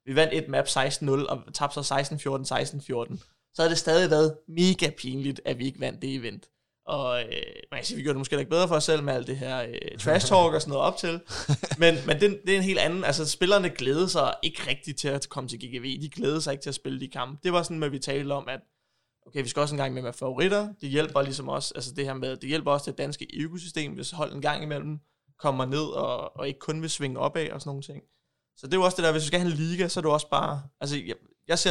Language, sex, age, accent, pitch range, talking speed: Danish, male, 20-39, native, 140-170 Hz, 275 wpm